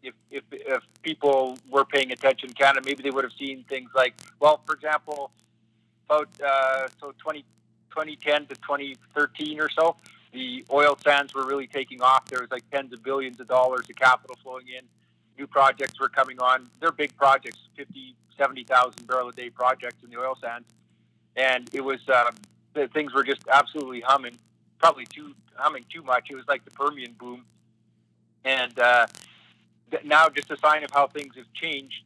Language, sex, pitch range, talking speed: English, male, 125-140 Hz, 180 wpm